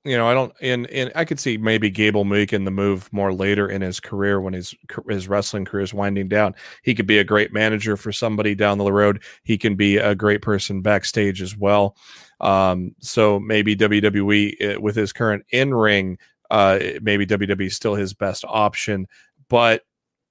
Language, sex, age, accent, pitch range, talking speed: English, male, 30-49, American, 100-120 Hz, 195 wpm